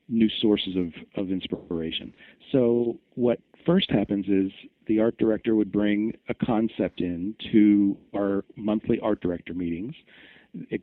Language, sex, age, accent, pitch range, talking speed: English, male, 40-59, American, 100-120 Hz, 140 wpm